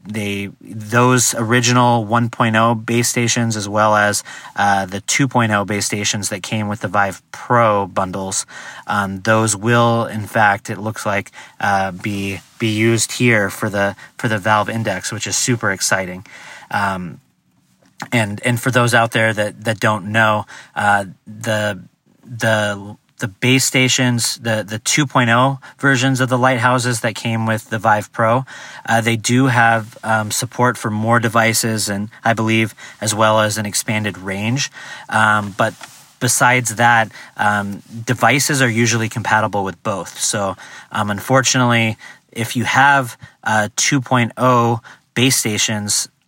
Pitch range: 105-125 Hz